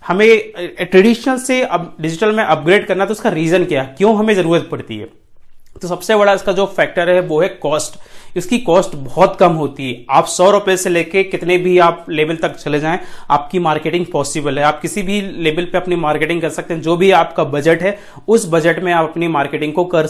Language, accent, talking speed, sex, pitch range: Hindi, native, 220 wpm, male, 150-185 Hz